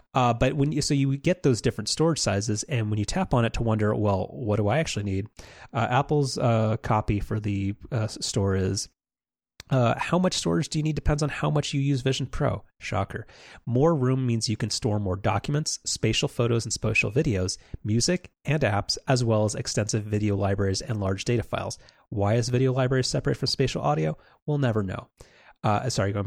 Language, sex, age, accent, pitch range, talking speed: English, male, 30-49, American, 105-135 Hz, 205 wpm